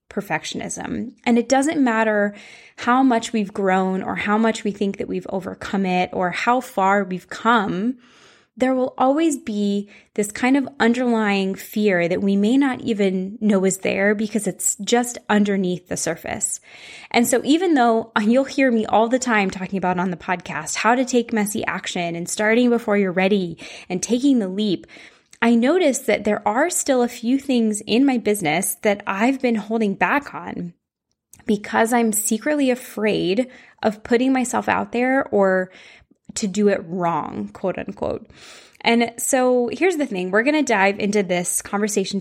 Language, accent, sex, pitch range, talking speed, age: English, American, female, 195-240 Hz, 170 wpm, 10-29